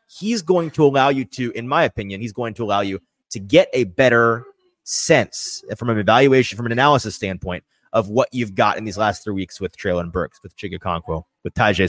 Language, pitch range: English, 105-125 Hz